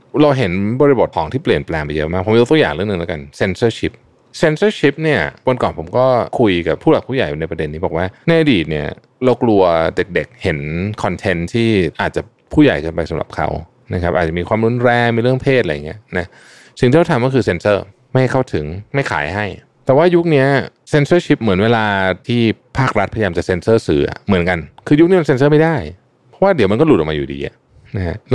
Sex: male